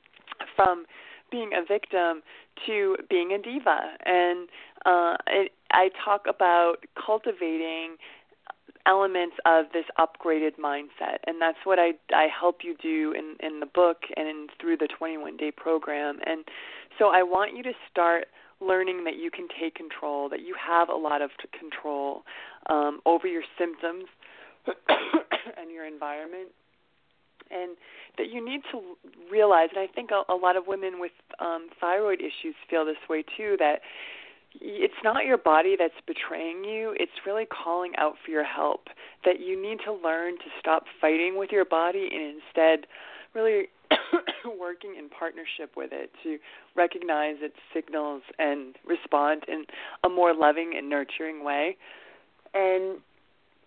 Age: 20-39